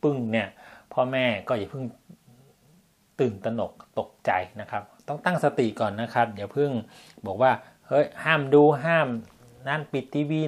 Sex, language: male, Thai